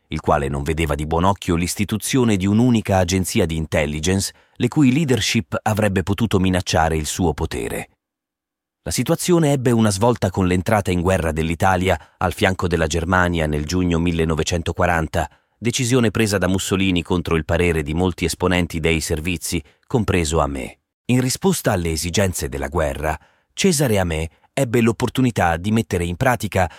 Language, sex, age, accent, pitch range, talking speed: Italian, male, 30-49, native, 85-120 Hz, 155 wpm